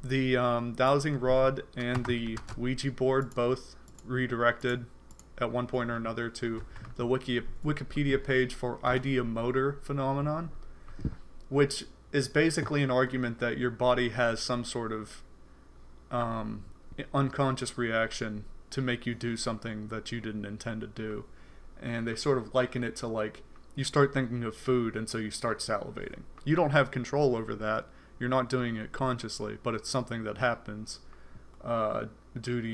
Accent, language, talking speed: American, English, 160 wpm